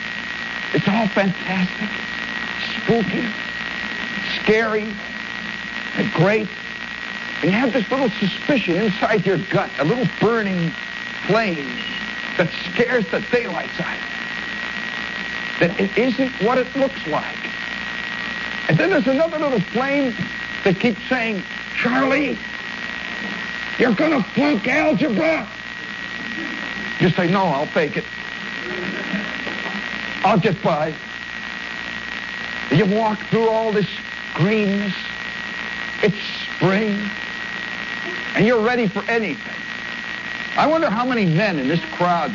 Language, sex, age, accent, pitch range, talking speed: English, male, 60-79, American, 195-240 Hz, 110 wpm